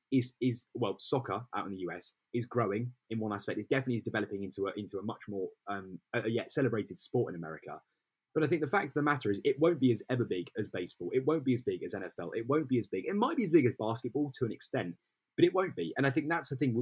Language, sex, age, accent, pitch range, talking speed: English, male, 10-29, British, 110-140 Hz, 285 wpm